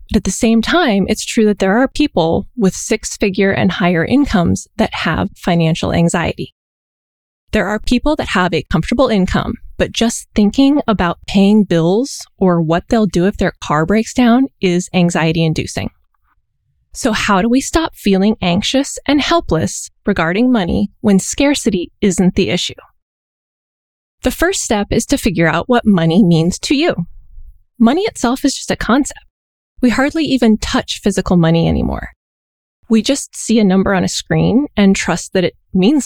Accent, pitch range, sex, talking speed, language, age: American, 180-245 Hz, female, 165 wpm, English, 20-39